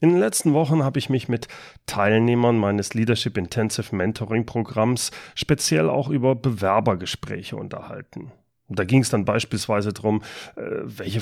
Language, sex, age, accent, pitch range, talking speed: German, male, 30-49, German, 105-135 Hz, 125 wpm